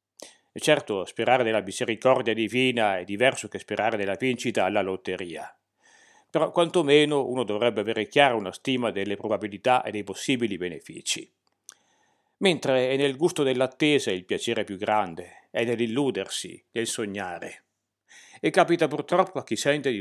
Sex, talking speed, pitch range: male, 145 wpm, 110-140 Hz